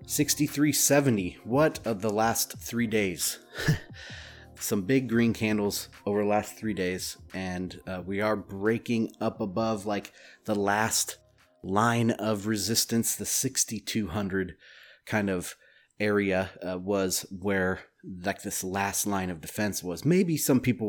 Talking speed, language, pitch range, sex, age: 130 wpm, English, 95-115 Hz, male, 30-49